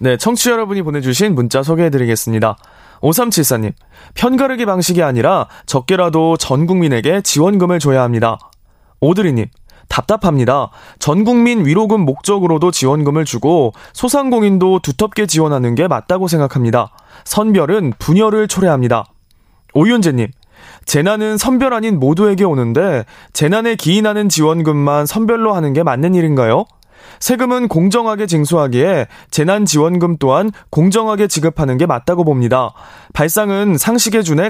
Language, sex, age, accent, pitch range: Korean, male, 20-39, native, 135-210 Hz